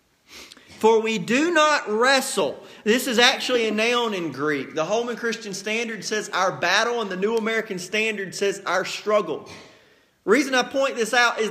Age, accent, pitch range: 30-49, American, 200-270 Hz